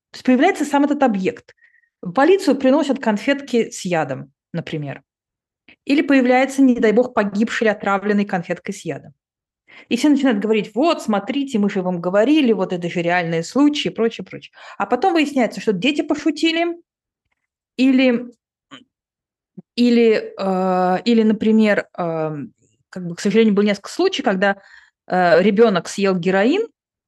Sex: female